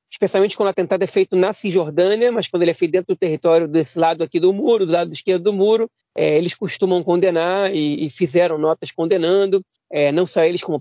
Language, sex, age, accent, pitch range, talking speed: Portuguese, male, 30-49, Brazilian, 165-210 Hz, 210 wpm